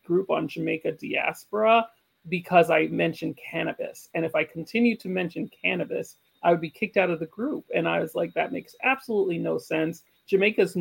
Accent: American